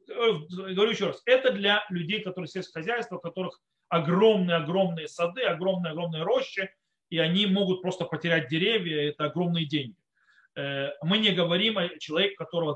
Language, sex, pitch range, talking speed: Russian, male, 160-225 Hz, 140 wpm